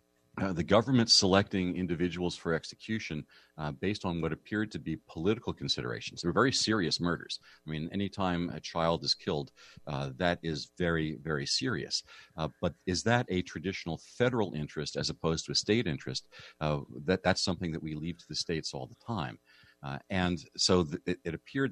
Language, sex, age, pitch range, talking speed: English, male, 40-59, 75-95 Hz, 185 wpm